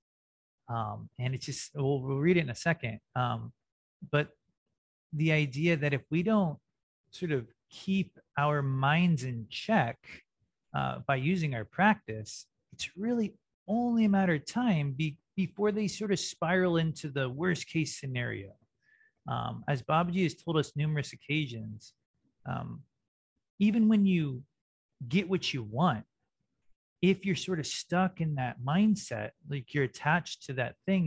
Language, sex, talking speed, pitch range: English, male, 150 wpm, 125-175 Hz